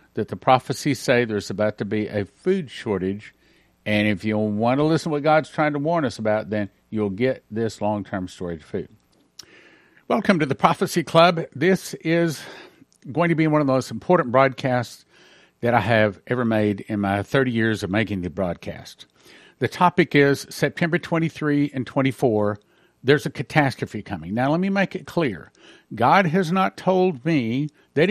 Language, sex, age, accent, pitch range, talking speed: English, male, 50-69, American, 115-165 Hz, 180 wpm